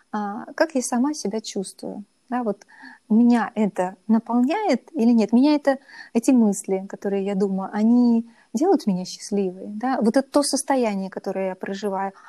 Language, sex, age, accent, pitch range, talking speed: Russian, female, 20-39, native, 200-250 Hz, 150 wpm